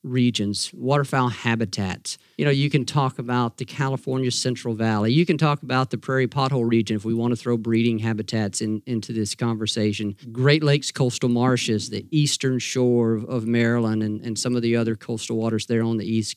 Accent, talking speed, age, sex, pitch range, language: American, 200 wpm, 50-69, male, 115-130 Hz, English